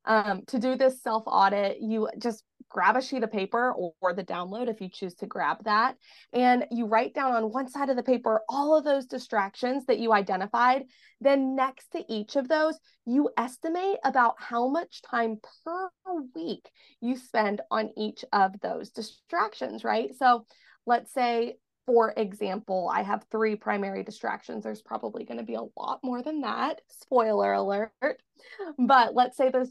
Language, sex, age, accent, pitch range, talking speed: English, female, 20-39, American, 205-260 Hz, 175 wpm